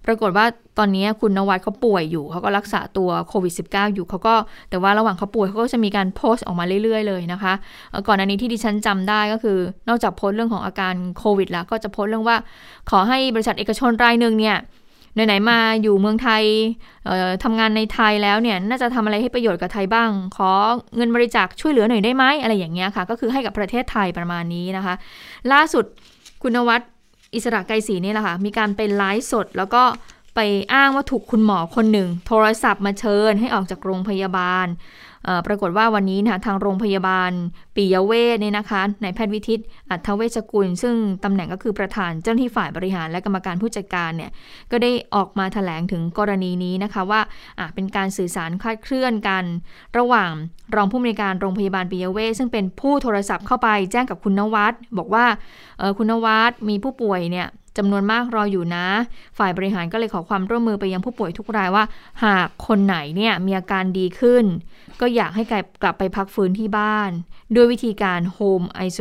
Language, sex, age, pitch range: Thai, female, 20-39, 190-225 Hz